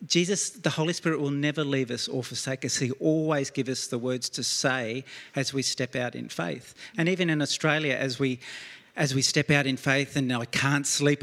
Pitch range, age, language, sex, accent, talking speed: 130-145 Hz, 40-59, English, male, Australian, 220 wpm